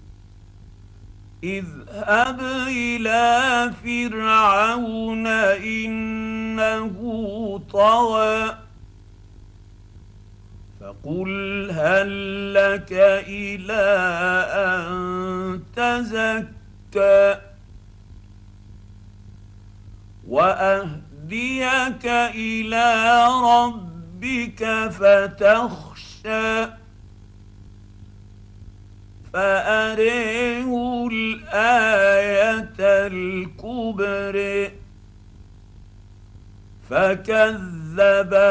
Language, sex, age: Arabic, male, 50-69